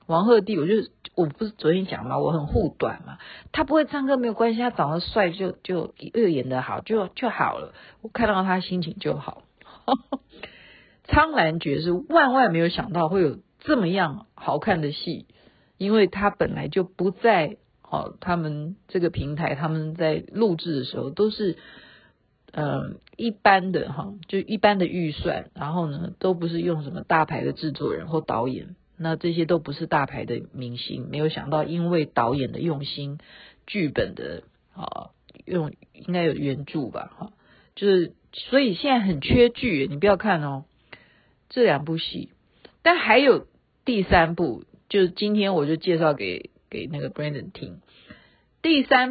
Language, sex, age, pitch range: Chinese, female, 50-69, 155-205 Hz